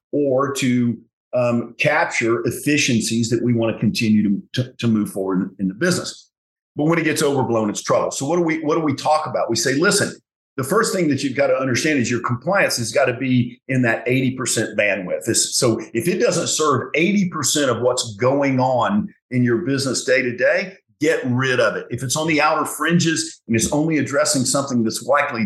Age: 50-69